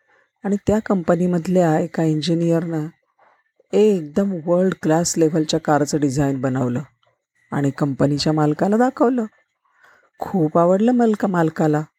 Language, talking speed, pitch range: Marathi, 95 wpm, 155-205 Hz